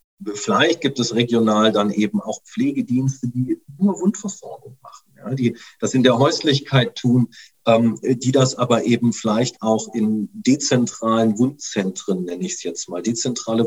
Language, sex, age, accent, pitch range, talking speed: German, male, 40-59, German, 110-130 Hz, 150 wpm